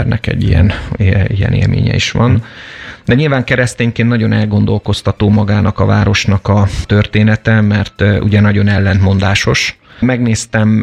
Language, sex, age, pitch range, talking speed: Hungarian, male, 30-49, 100-110 Hz, 115 wpm